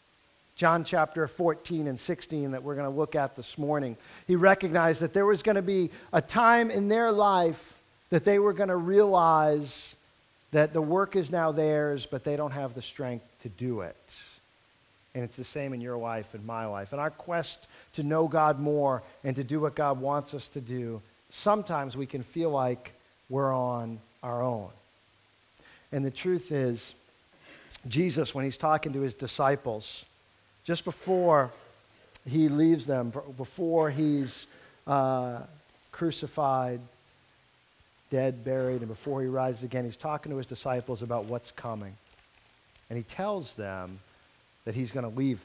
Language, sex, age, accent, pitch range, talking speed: English, male, 50-69, American, 120-160 Hz, 165 wpm